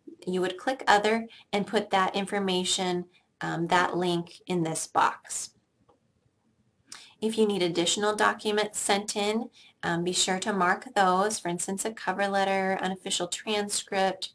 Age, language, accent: 30-49, English, American